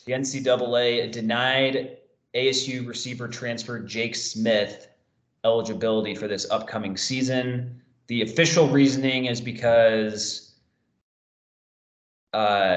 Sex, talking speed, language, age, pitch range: male, 90 wpm, English, 20-39, 115-135 Hz